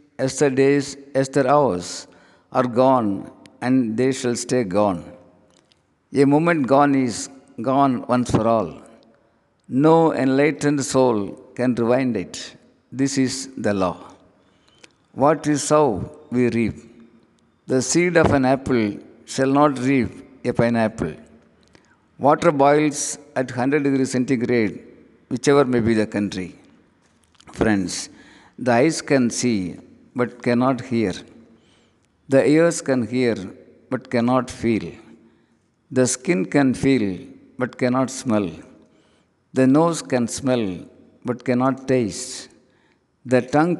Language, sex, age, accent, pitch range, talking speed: Tamil, male, 50-69, native, 115-140 Hz, 115 wpm